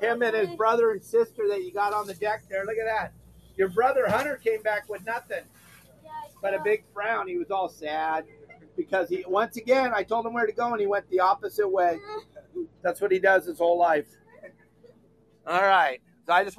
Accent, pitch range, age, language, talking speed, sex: American, 170-215 Hz, 40-59, English, 215 wpm, male